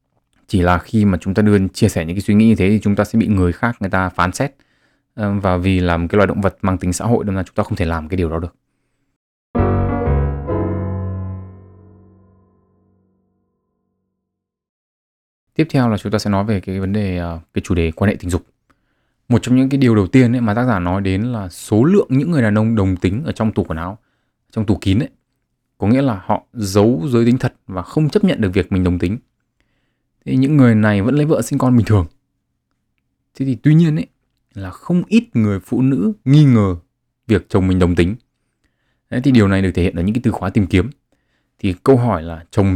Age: 20-39